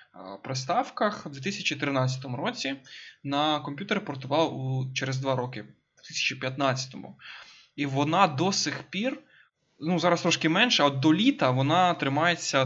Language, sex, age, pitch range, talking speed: Ukrainian, male, 20-39, 135-165 Hz, 135 wpm